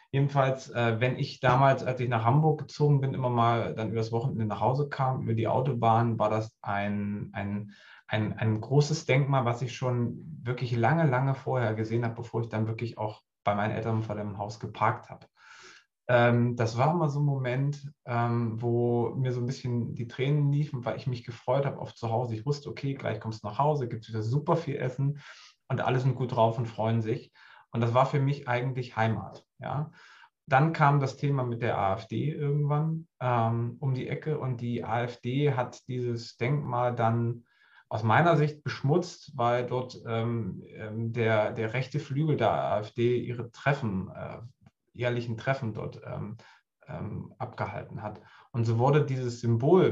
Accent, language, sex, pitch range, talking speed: German, German, male, 115-135 Hz, 180 wpm